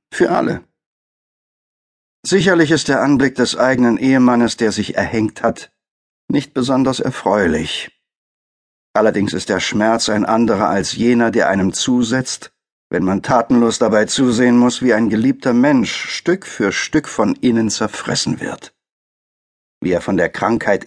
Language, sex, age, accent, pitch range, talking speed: German, male, 50-69, German, 105-130 Hz, 140 wpm